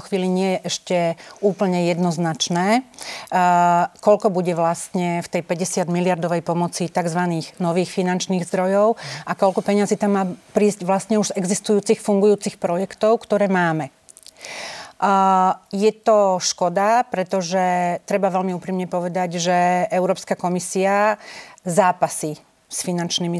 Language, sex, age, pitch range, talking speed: Slovak, female, 40-59, 175-205 Hz, 120 wpm